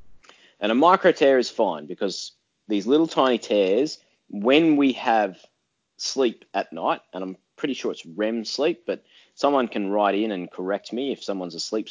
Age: 20-39